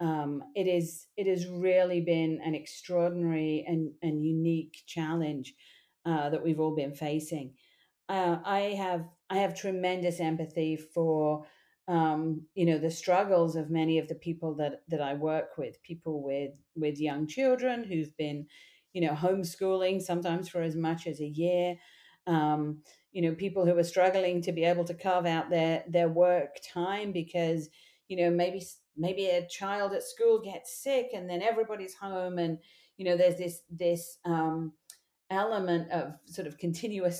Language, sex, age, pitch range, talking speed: English, female, 40-59, 155-180 Hz, 165 wpm